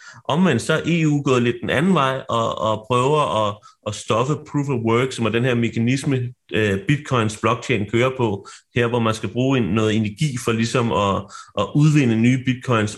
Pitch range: 110-130 Hz